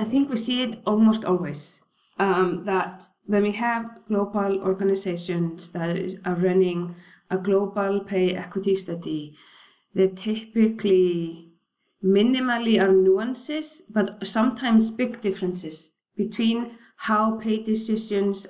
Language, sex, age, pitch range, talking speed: English, female, 20-39, 180-215 Hz, 115 wpm